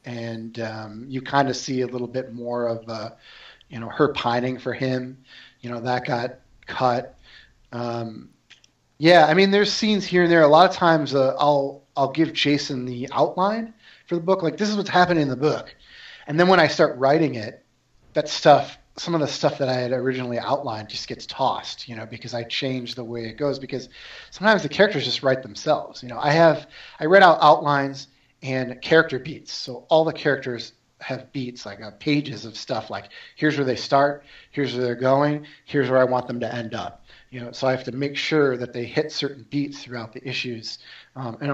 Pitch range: 120-150 Hz